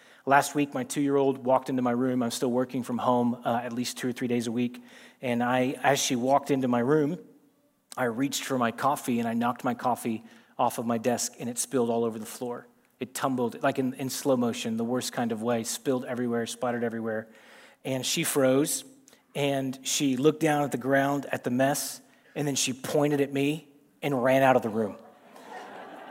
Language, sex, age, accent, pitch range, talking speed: English, male, 30-49, American, 120-150 Hz, 210 wpm